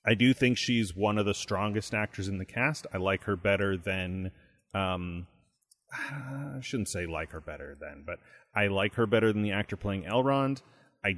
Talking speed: 195 wpm